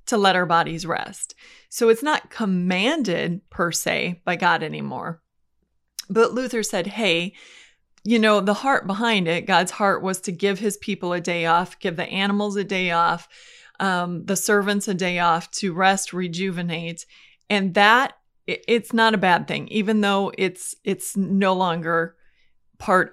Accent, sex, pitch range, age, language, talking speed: American, female, 180-220 Hz, 30-49, English, 165 wpm